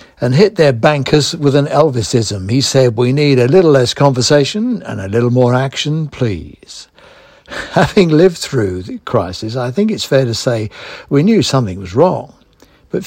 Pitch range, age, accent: 115-150 Hz, 60-79, British